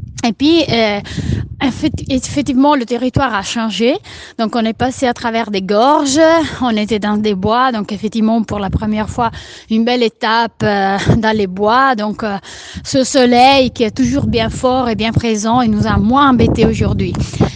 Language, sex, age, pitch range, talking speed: Italian, female, 30-49, 225-280 Hz, 180 wpm